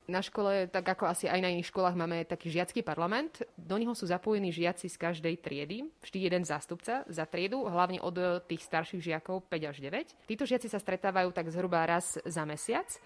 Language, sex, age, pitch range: Slovak, female, 30-49, 170-190 Hz